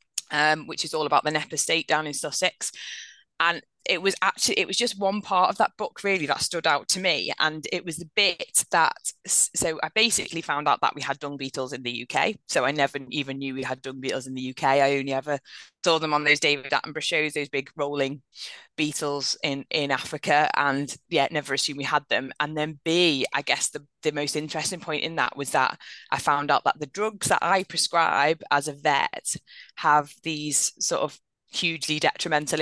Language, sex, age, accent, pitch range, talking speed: English, female, 20-39, British, 150-195 Hz, 215 wpm